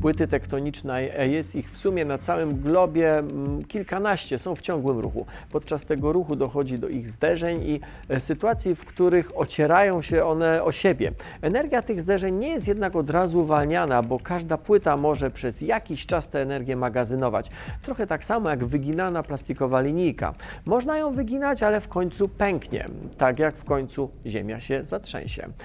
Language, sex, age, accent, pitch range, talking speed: Polish, male, 40-59, native, 140-185 Hz, 165 wpm